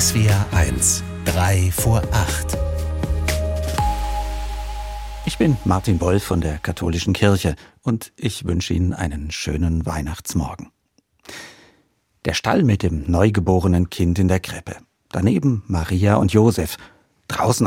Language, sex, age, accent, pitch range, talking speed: German, male, 50-69, German, 90-115 Hz, 100 wpm